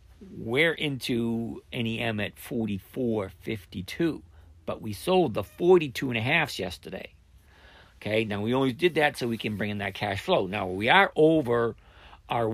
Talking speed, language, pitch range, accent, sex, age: 155 wpm, English, 100-160 Hz, American, male, 50-69